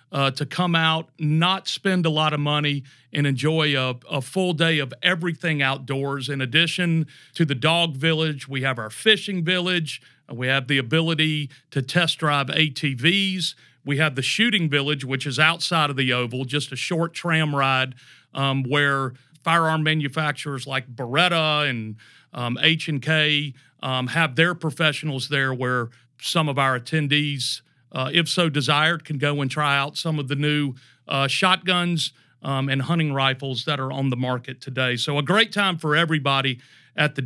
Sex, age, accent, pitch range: male, 40-59, American, 135-165 Hz